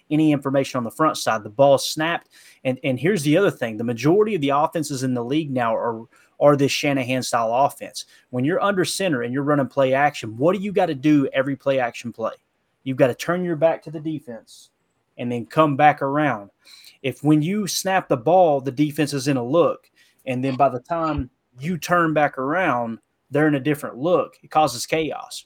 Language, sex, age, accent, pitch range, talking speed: English, male, 30-49, American, 130-155 Hz, 210 wpm